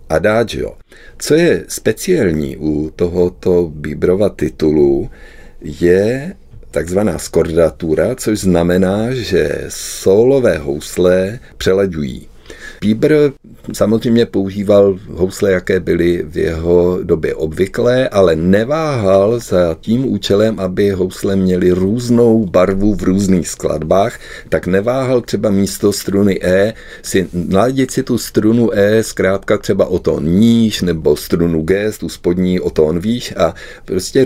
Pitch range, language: 90-115 Hz, Czech